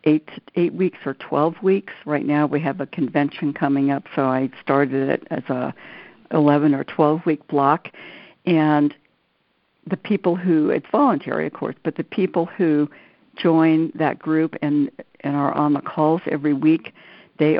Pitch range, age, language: 140-165 Hz, 60-79, English